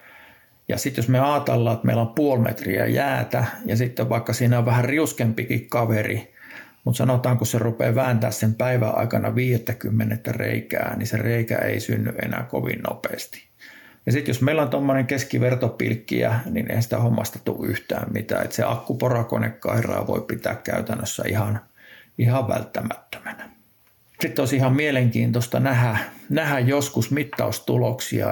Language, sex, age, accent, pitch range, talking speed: Finnish, male, 50-69, native, 115-130 Hz, 145 wpm